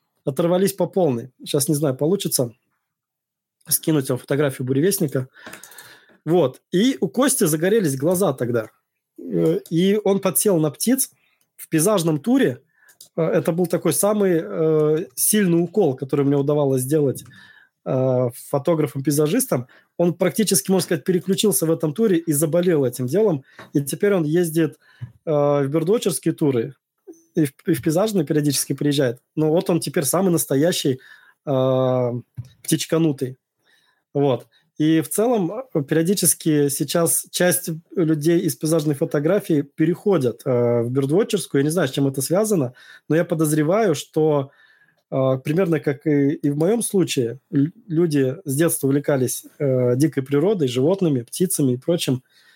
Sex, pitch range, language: male, 140-180 Hz, Russian